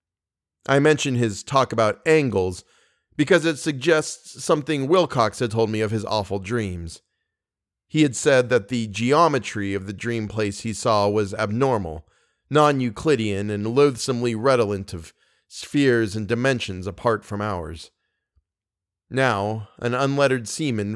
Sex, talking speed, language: male, 135 wpm, English